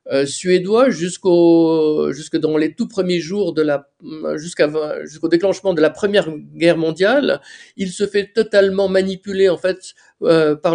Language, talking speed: French, 150 wpm